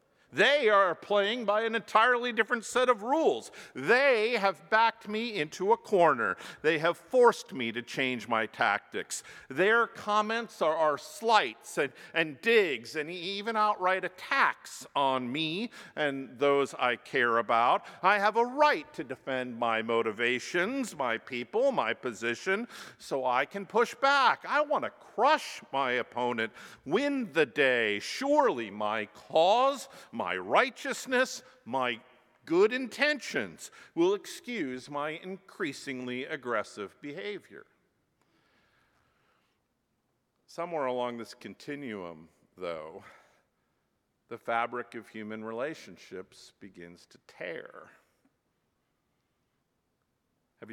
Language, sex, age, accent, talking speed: English, male, 50-69, American, 115 wpm